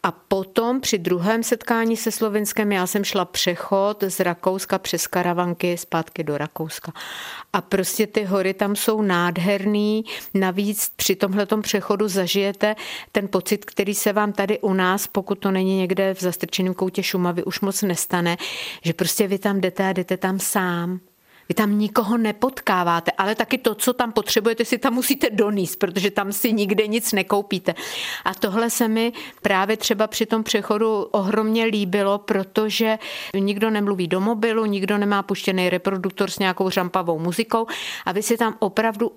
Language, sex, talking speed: Czech, female, 165 wpm